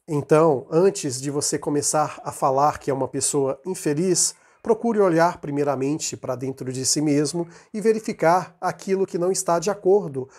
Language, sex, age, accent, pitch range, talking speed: Portuguese, male, 40-59, Brazilian, 140-175 Hz, 160 wpm